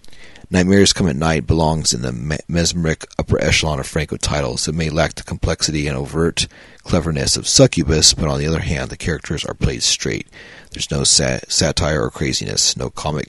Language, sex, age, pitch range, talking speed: English, male, 40-59, 70-90 Hz, 185 wpm